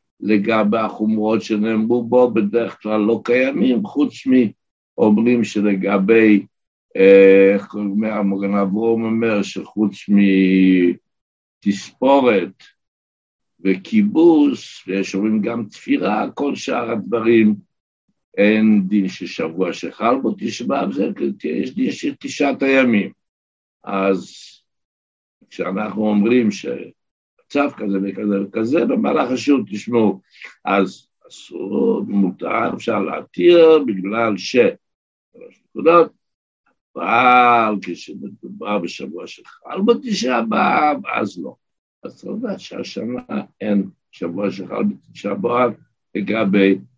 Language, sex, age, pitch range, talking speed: Hebrew, male, 60-79, 95-125 Hz, 95 wpm